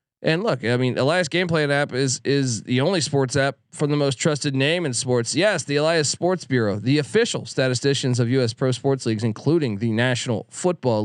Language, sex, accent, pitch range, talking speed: English, male, American, 125-155 Hz, 205 wpm